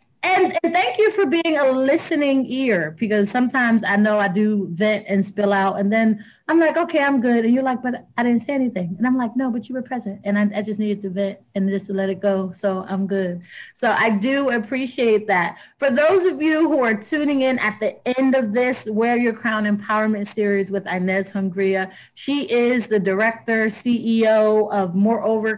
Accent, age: American, 30-49